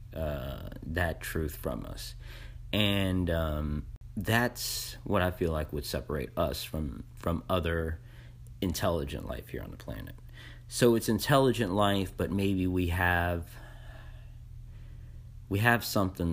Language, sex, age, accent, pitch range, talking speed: English, male, 30-49, American, 80-115 Hz, 130 wpm